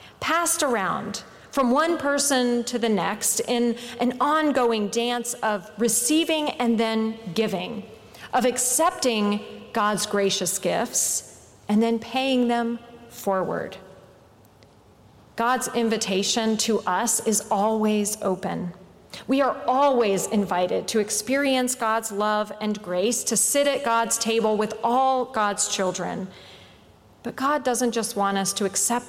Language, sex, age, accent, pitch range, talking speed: English, female, 40-59, American, 210-255 Hz, 125 wpm